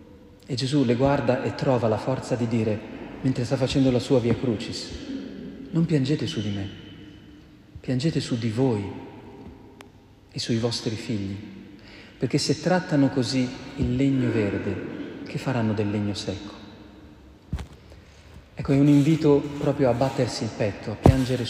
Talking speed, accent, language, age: 150 wpm, native, Italian, 40-59